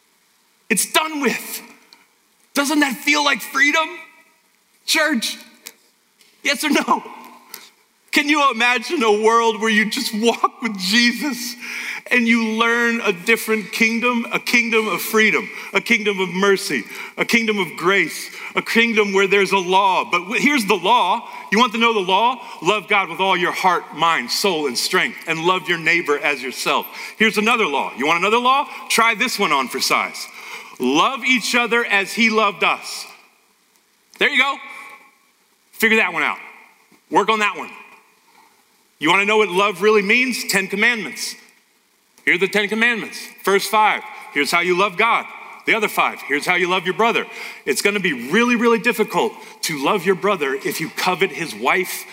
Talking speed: 175 wpm